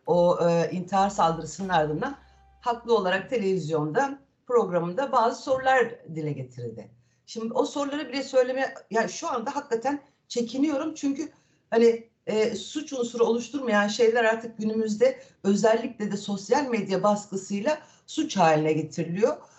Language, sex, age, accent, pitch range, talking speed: Turkish, female, 60-79, native, 190-250 Hz, 125 wpm